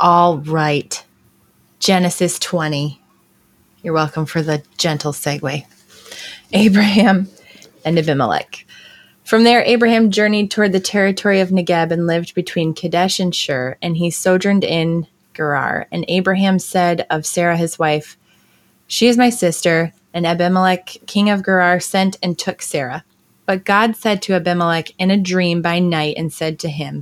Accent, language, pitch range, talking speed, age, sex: American, English, 160-190 Hz, 150 wpm, 20-39, female